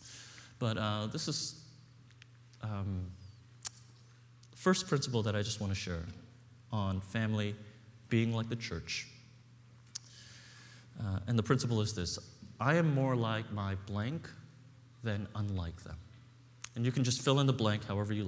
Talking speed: 145 wpm